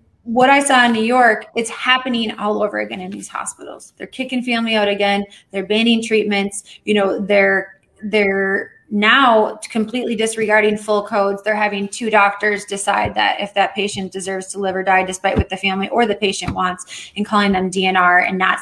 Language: English